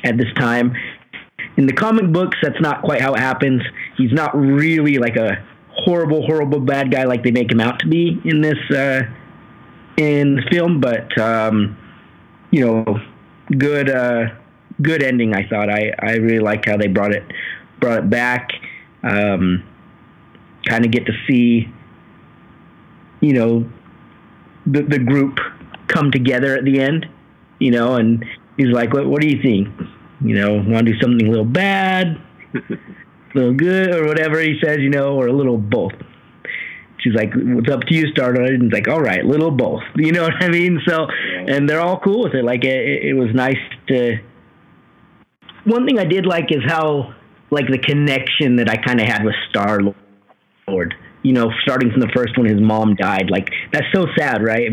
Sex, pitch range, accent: male, 115-150 Hz, American